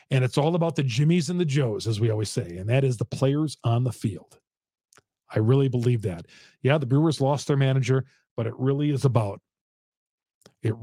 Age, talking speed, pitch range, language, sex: 40-59, 205 wpm, 125-155 Hz, English, male